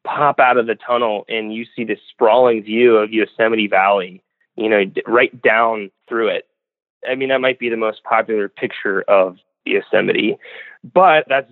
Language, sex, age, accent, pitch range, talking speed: English, male, 30-49, American, 110-170 Hz, 170 wpm